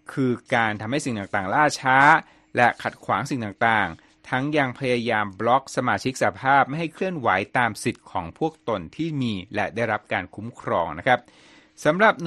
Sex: male